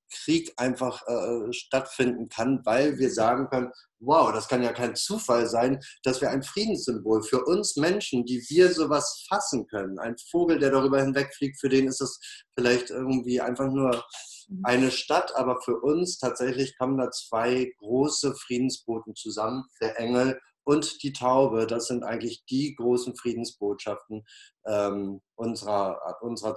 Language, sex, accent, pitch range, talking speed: German, male, German, 110-130 Hz, 150 wpm